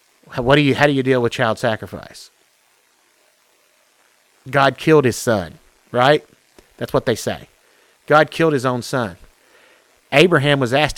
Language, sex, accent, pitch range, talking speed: English, male, American, 110-140 Hz, 150 wpm